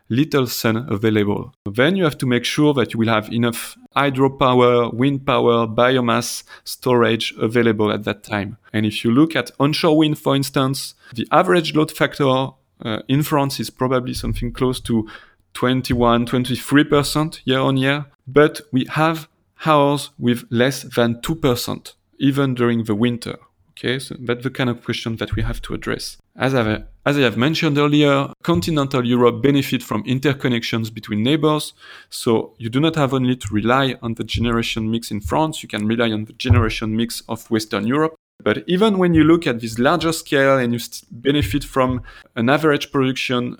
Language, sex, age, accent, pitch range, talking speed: English, male, 30-49, French, 115-140 Hz, 170 wpm